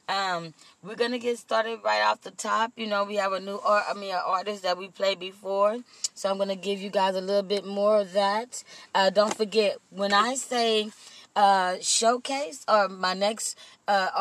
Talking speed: 205 wpm